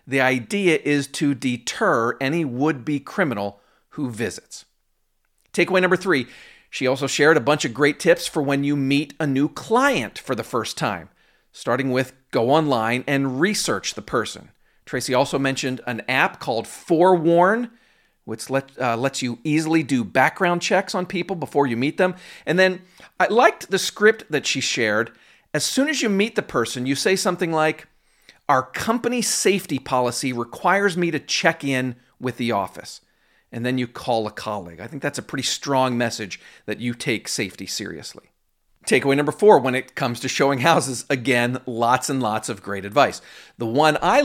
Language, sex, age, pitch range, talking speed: English, male, 40-59, 125-170 Hz, 175 wpm